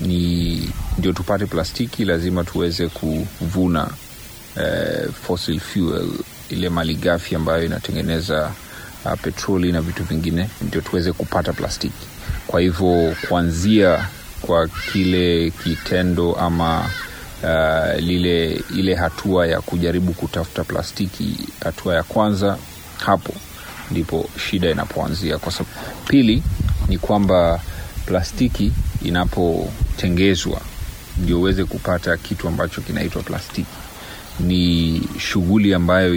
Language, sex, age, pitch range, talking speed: Swahili, male, 40-59, 85-95 Hz, 105 wpm